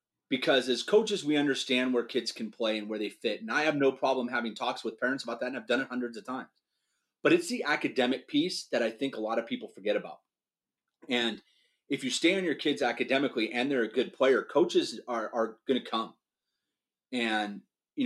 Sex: male